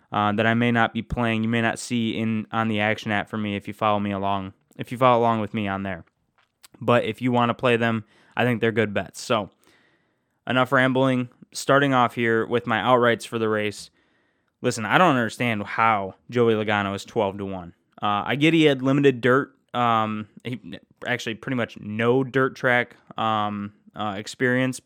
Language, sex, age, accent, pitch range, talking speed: English, male, 10-29, American, 110-135 Hz, 205 wpm